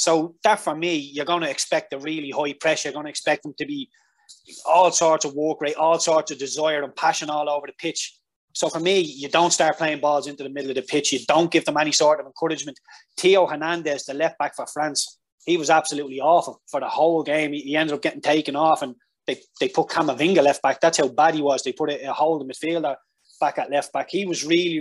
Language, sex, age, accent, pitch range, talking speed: English, male, 20-39, Irish, 145-175 Hz, 240 wpm